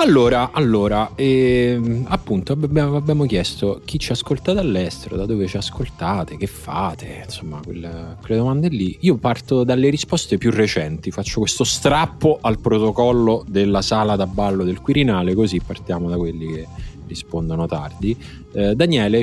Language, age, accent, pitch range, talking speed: Italian, 20-39, native, 95-125 Hz, 145 wpm